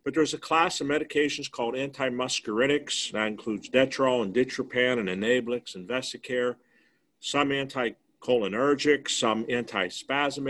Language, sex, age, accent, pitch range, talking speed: English, male, 50-69, American, 110-145 Hz, 120 wpm